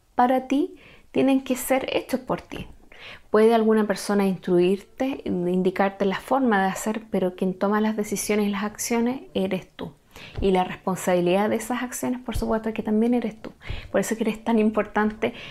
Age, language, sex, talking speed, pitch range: 20-39, Spanish, female, 180 wpm, 190-230 Hz